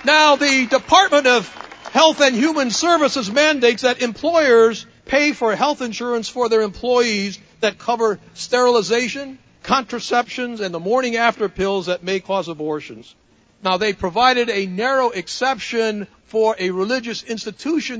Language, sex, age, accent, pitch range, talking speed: English, male, 60-79, American, 200-250 Hz, 135 wpm